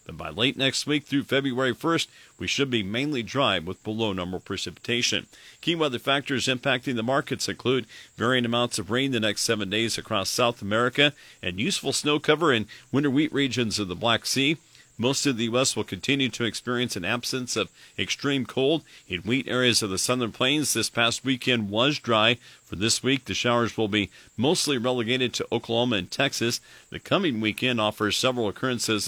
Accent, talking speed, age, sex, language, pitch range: American, 185 wpm, 50-69, male, English, 105-130 Hz